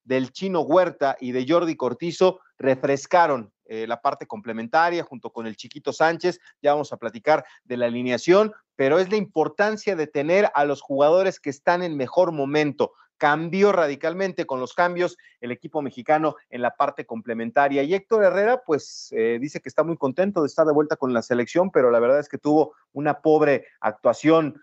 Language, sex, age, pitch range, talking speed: Spanish, male, 40-59, 130-170 Hz, 185 wpm